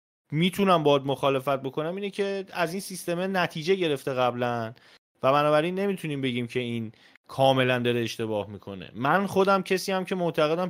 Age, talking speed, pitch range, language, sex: 30-49, 155 wpm, 115-160 Hz, Persian, male